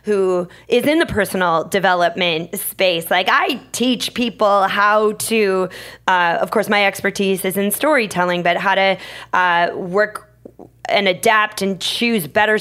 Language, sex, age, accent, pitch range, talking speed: English, female, 20-39, American, 180-215 Hz, 150 wpm